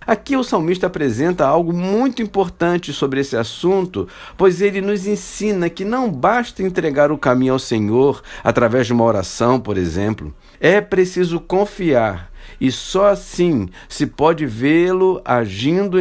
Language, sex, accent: Portuguese, male, Brazilian